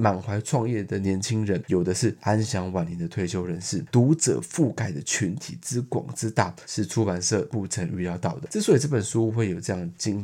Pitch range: 100-130 Hz